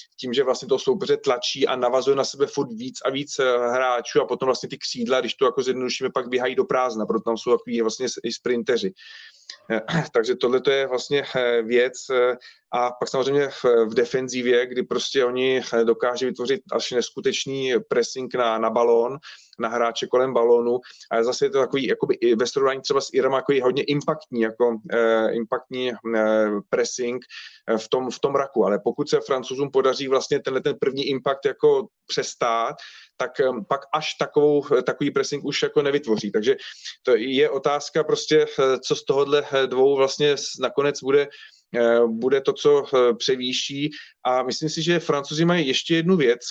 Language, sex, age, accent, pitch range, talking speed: Czech, male, 30-49, native, 125-160 Hz, 170 wpm